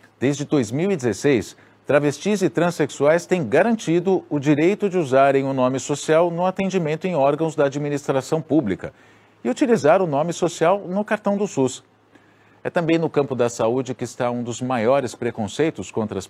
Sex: male